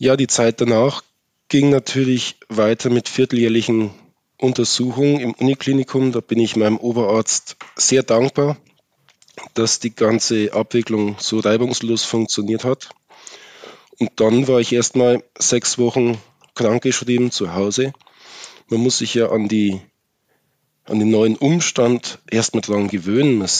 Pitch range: 110-130 Hz